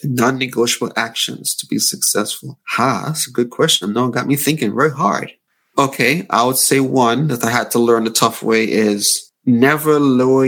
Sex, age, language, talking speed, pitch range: male, 30-49, English, 190 wpm, 115-140 Hz